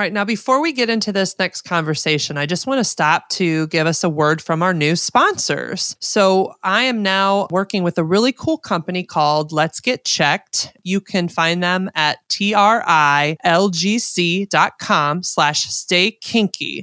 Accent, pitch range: American, 165-215 Hz